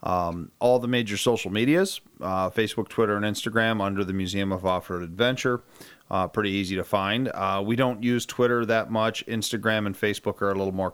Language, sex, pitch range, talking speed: English, male, 105-125 Hz, 195 wpm